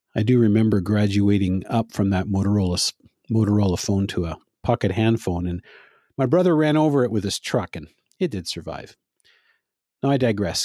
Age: 50-69